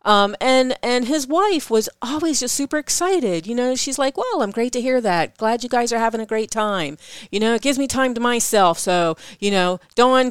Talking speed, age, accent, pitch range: 235 wpm, 40-59, American, 180-260 Hz